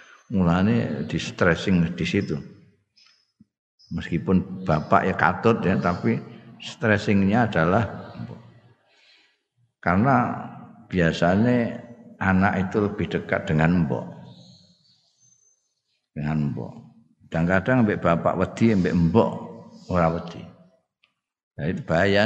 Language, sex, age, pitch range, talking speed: Indonesian, male, 60-79, 90-120 Hz, 90 wpm